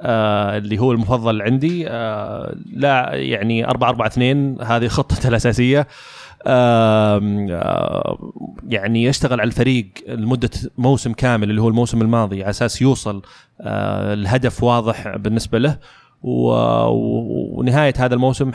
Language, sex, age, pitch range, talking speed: Arabic, male, 30-49, 110-135 Hz, 120 wpm